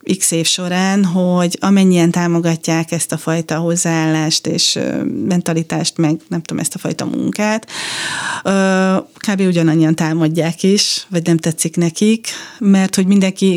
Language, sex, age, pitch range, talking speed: Hungarian, female, 30-49, 165-190 Hz, 135 wpm